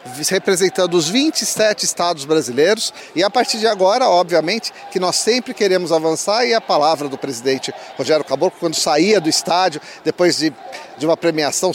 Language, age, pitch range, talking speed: Portuguese, 50-69, 155-245 Hz, 165 wpm